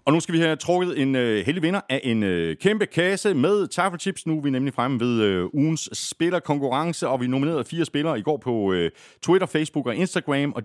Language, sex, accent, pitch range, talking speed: Danish, male, native, 100-150 Hz, 225 wpm